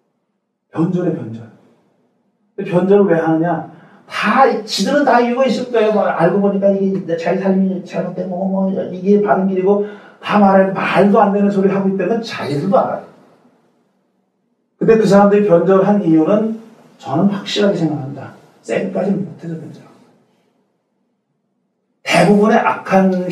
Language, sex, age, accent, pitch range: Korean, male, 40-59, native, 175-230 Hz